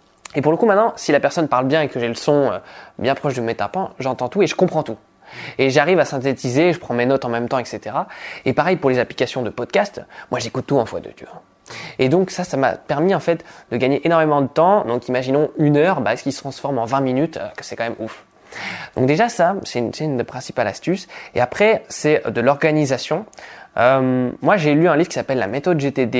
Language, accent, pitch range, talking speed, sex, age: French, French, 125-160 Hz, 245 wpm, male, 20-39